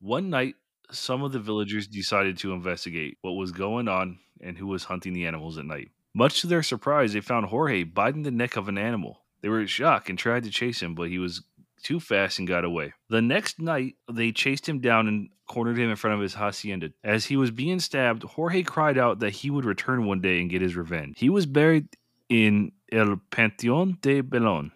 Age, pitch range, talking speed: 20-39, 95-125 Hz, 225 wpm